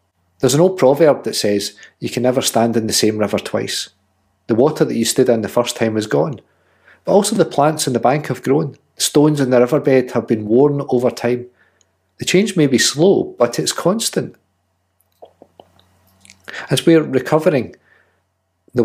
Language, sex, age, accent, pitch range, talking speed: English, male, 40-59, British, 100-135 Hz, 180 wpm